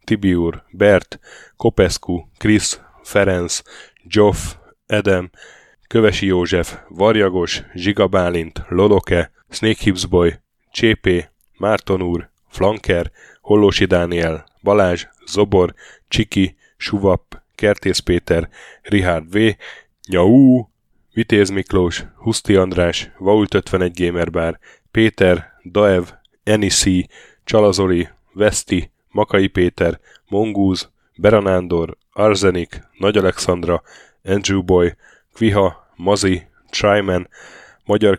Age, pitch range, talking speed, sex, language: 10-29, 85-105 Hz, 80 wpm, male, Hungarian